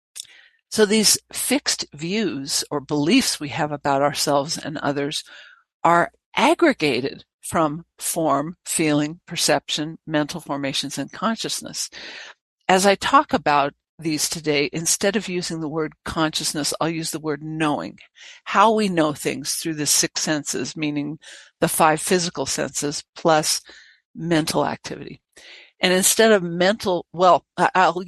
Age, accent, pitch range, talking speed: 60-79, American, 155-205 Hz, 130 wpm